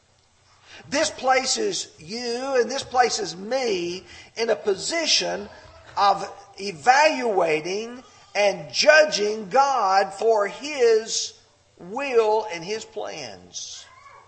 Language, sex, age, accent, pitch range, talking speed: English, male, 50-69, American, 190-280 Hz, 90 wpm